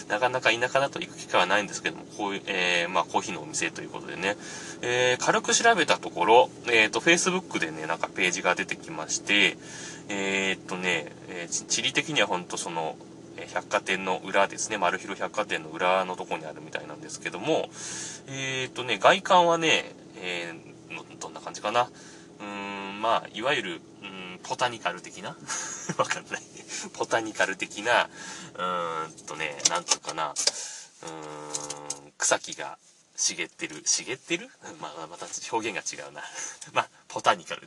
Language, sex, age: Japanese, male, 20-39